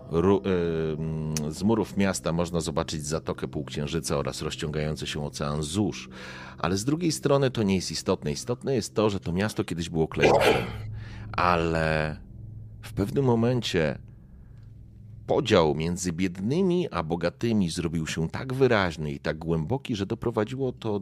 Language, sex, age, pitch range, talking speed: Polish, male, 40-59, 75-105 Hz, 145 wpm